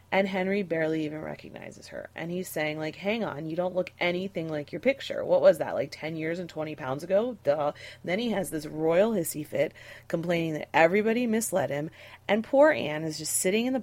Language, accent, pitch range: English, American, 145-200 Hz